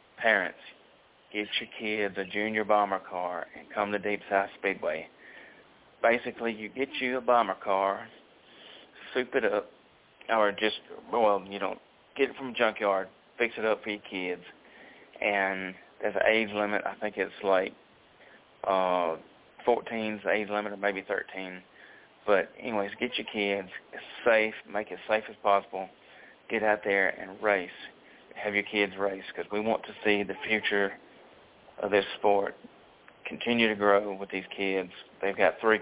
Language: English